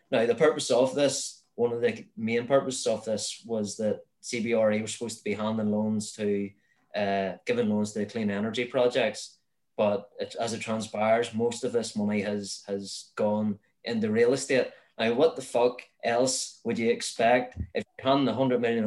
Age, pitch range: 20-39, 105-130 Hz